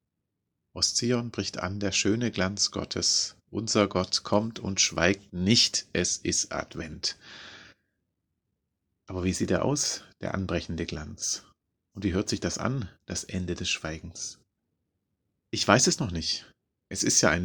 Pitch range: 95-110 Hz